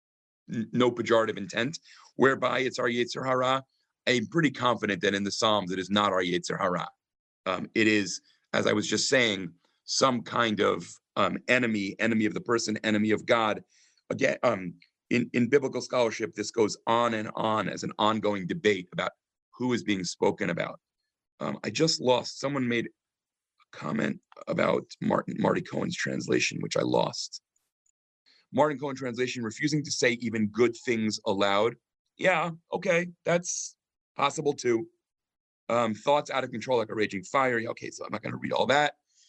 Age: 40-59